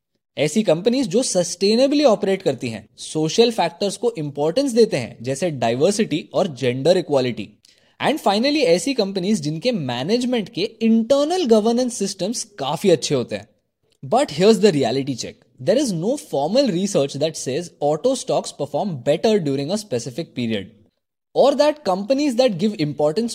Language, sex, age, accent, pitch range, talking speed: Hindi, male, 20-39, native, 150-235 Hz, 150 wpm